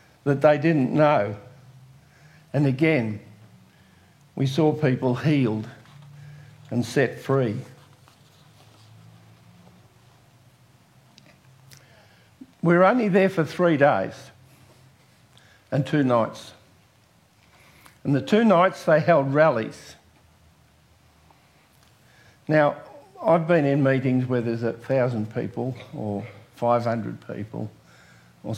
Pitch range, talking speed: 110-140 Hz, 90 wpm